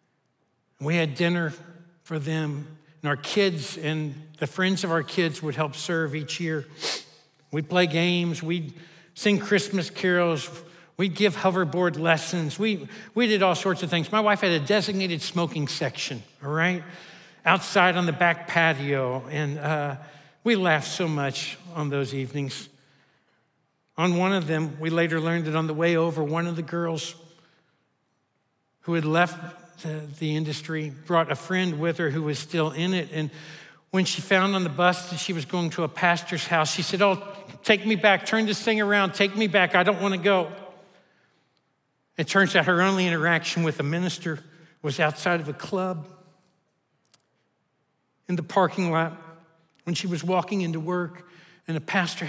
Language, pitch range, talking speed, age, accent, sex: English, 160-185 Hz, 175 wpm, 60-79, American, male